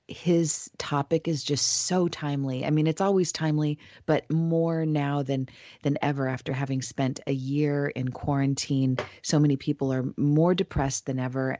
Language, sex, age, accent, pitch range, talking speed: English, female, 30-49, American, 130-150 Hz, 165 wpm